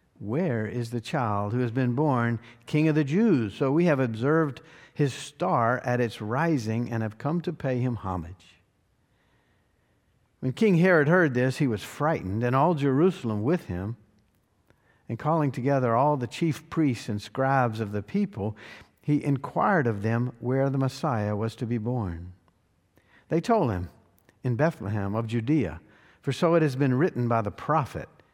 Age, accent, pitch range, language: 50-69, American, 110-145 Hz, English